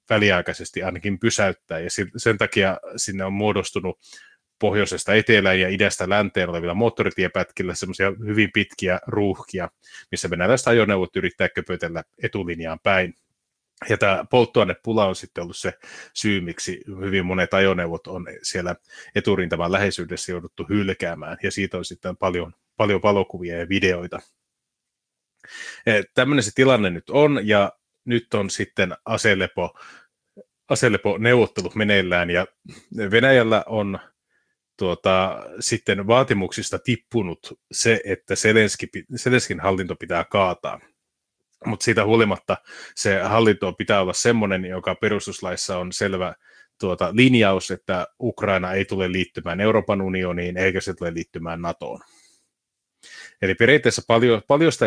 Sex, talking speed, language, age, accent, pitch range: male, 120 wpm, Finnish, 30-49, native, 90-110 Hz